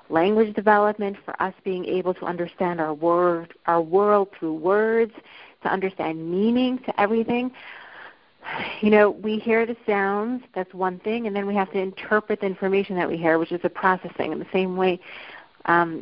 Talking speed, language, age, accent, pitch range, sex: 175 wpm, English, 40-59, American, 175-210 Hz, female